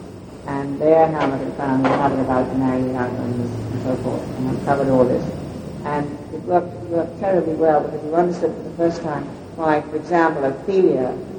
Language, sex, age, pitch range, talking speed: English, female, 60-79, 150-175 Hz, 185 wpm